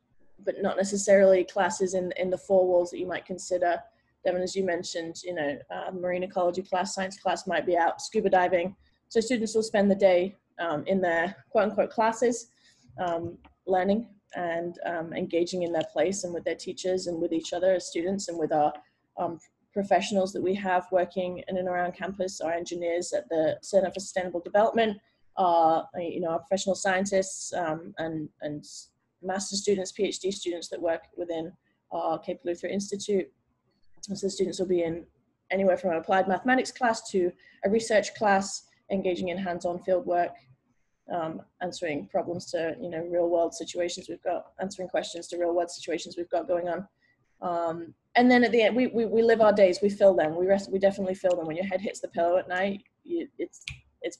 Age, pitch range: 20-39, 170-195 Hz